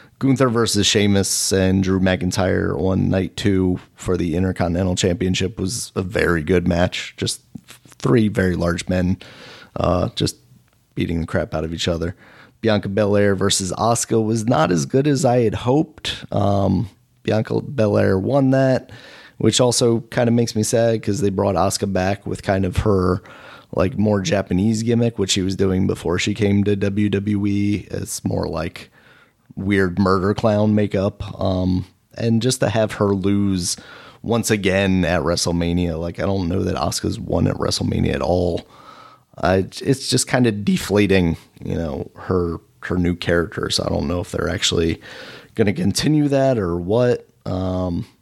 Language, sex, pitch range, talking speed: English, male, 95-110 Hz, 165 wpm